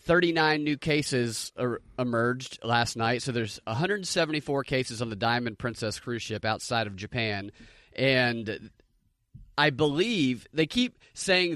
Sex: male